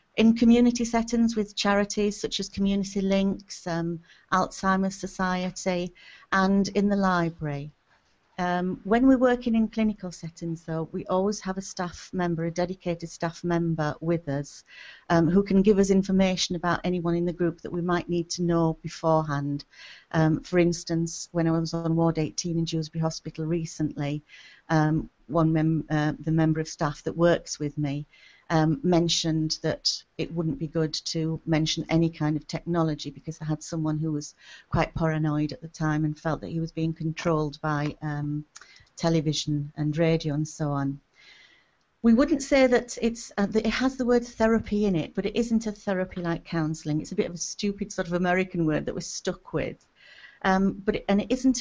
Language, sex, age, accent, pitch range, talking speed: English, female, 40-59, British, 160-200 Hz, 185 wpm